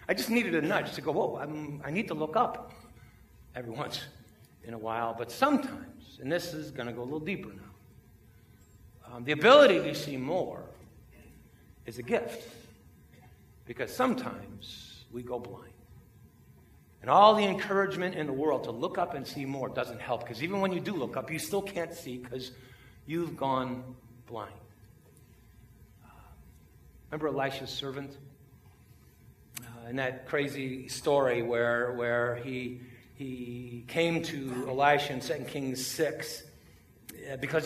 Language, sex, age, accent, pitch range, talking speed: English, male, 50-69, American, 120-165 Hz, 150 wpm